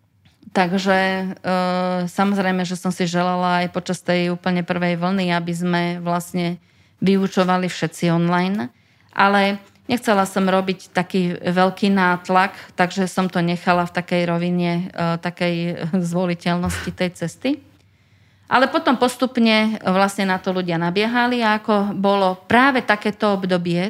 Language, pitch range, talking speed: Slovak, 170-190 Hz, 125 wpm